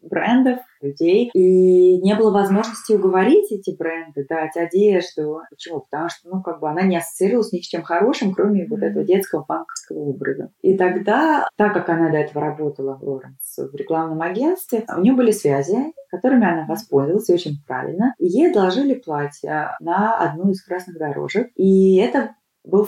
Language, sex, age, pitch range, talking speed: Russian, female, 20-39, 160-205 Hz, 165 wpm